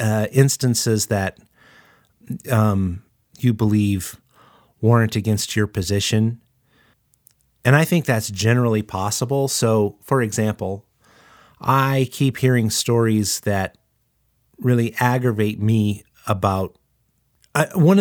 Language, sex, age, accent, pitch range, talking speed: English, male, 30-49, American, 100-125 Hz, 95 wpm